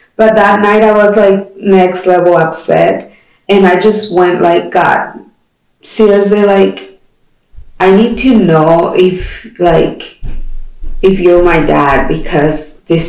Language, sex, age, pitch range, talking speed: English, female, 30-49, 170-205 Hz, 135 wpm